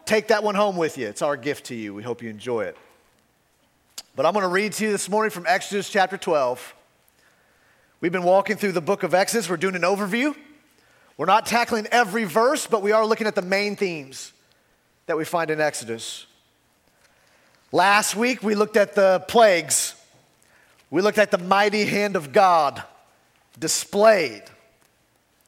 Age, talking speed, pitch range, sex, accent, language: 40-59, 175 wpm, 145-210 Hz, male, American, English